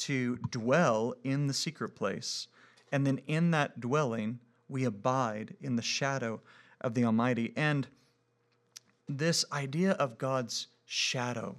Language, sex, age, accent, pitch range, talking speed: English, male, 40-59, American, 120-140 Hz, 130 wpm